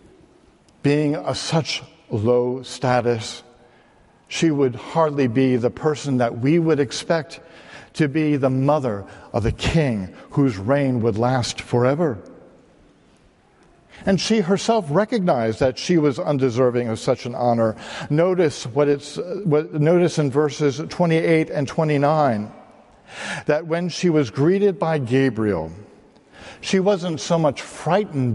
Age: 60-79